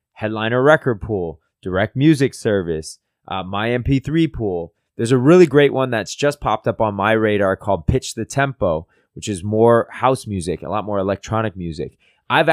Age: 20-39